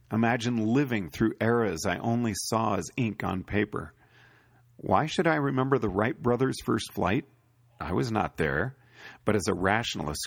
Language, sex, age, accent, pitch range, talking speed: English, male, 40-59, American, 100-125 Hz, 165 wpm